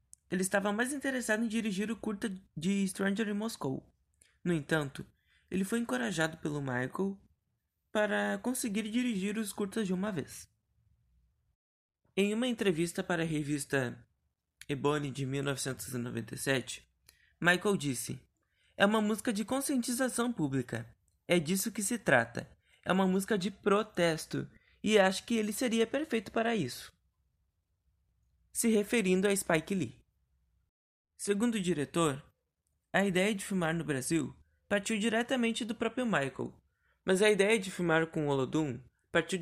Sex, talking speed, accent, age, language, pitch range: male, 135 wpm, Brazilian, 20-39, Portuguese, 145-215 Hz